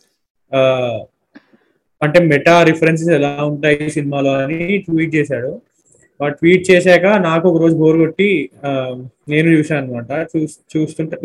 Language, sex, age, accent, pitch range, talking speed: Telugu, male, 20-39, native, 135-170 Hz, 105 wpm